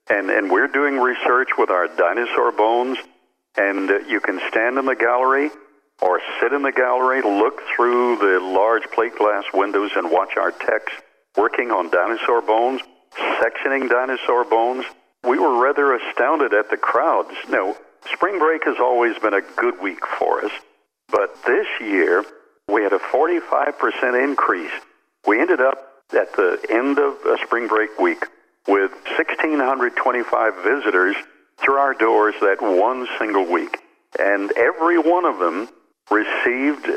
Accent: American